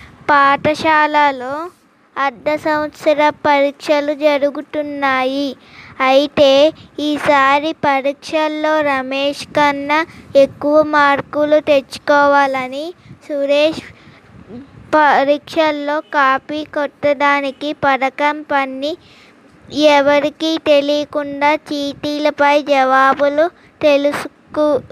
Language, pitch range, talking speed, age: Telugu, 280-300 Hz, 55 wpm, 20-39